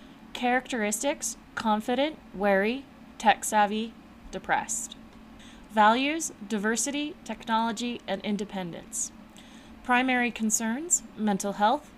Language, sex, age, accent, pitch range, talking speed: English, female, 20-39, American, 200-250 Hz, 70 wpm